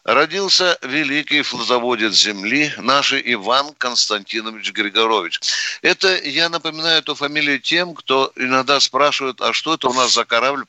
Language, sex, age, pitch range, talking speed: Russian, male, 60-79, 115-150 Hz, 135 wpm